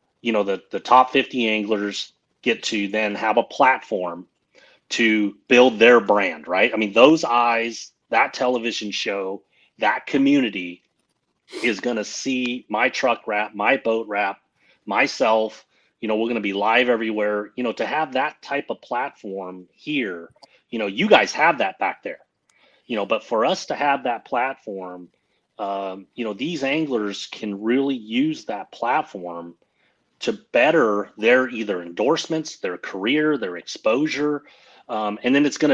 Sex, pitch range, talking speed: male, 100-125 Hz, 160 wpm